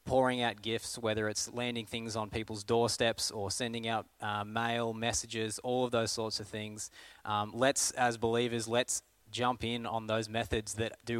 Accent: Australian